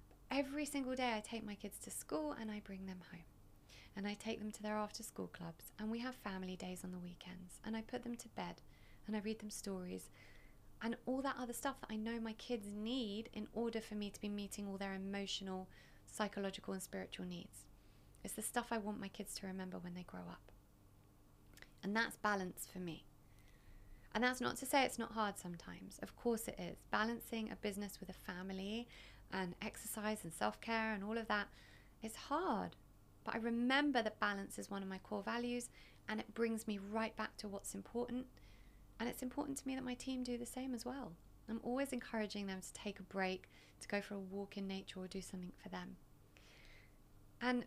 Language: English